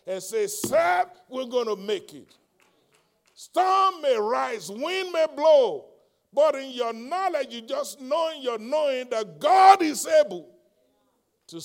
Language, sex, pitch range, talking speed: English, male, 160-230 Hz, 145 wpm